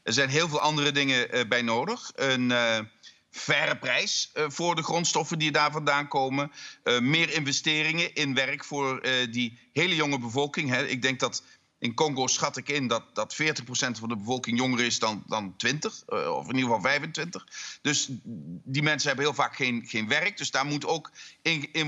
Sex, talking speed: male, 190 wpm